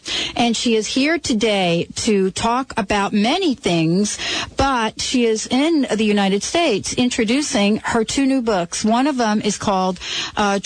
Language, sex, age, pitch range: English, female, 40-59, 180-235 Hz